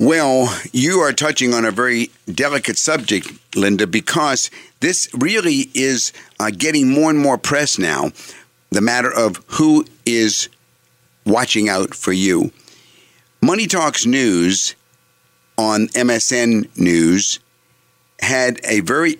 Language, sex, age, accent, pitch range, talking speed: English, male, 50-69, American, 105-145 Hz, 120 wpm